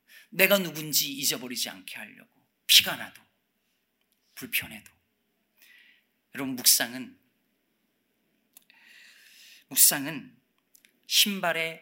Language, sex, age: Korean, male, 40-59